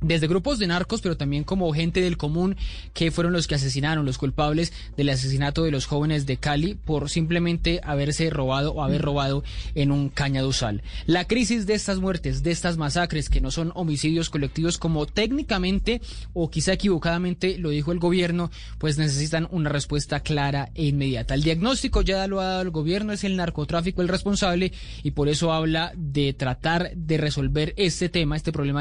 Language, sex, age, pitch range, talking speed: Spanish, male, 20-39, 145-185 Hz, 185 wpm